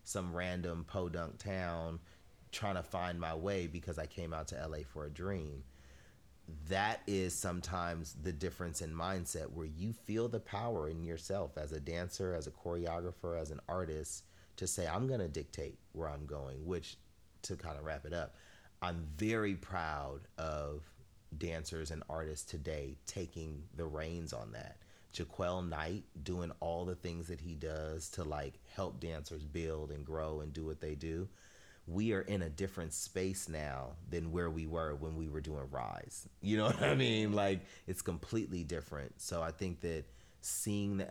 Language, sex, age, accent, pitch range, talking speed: English, male, 30-49, American, 80-95 Hz, 180 wpm